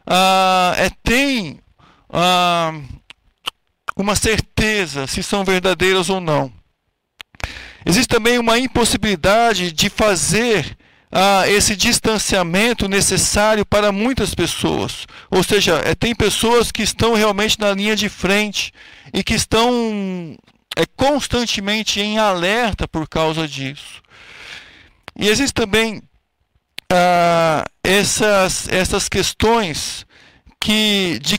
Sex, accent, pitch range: male, Brazilian, 175-215 Hz